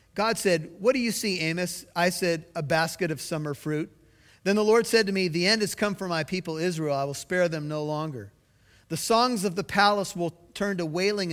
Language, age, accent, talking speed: English, 40-59, American, 230 wpm